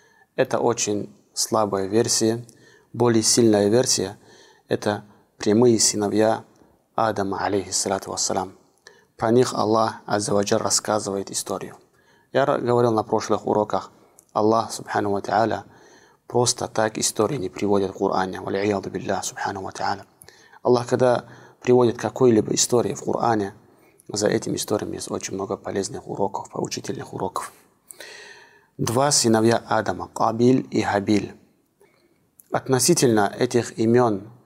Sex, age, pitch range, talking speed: male, 30-49, 105-120 Hz, 105 wpm